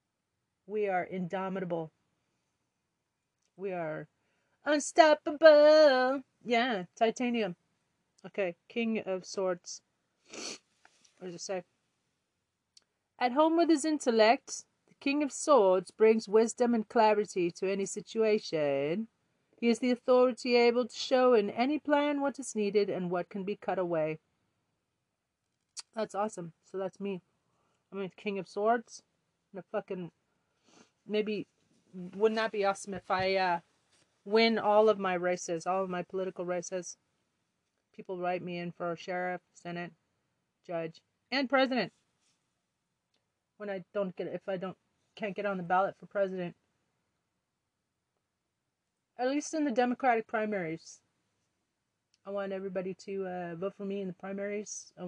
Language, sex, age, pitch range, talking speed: English, female, 40-59, 180-225 Hz, 135 wpm